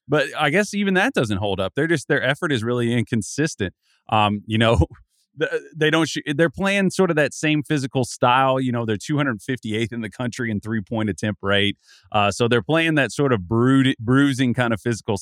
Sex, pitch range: male, 105-140 Hz